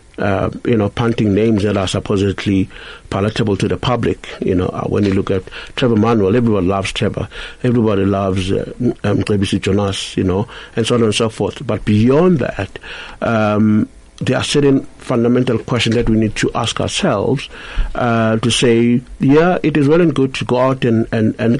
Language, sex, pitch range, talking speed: English, male, 105-130 Hz, 185 wpm